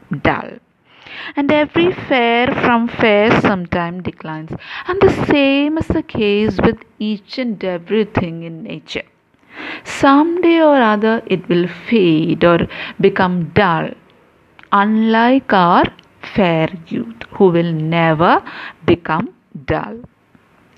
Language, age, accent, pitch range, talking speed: English, 50-69, Indian, 180-245 Hz, 110 wpm